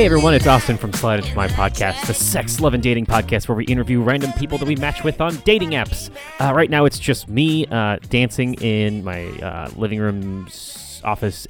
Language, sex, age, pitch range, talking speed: English, male, 30-49, 100-140 Hz, 215 wpm